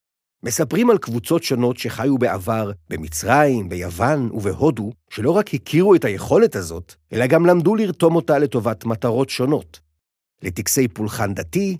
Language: Hebrew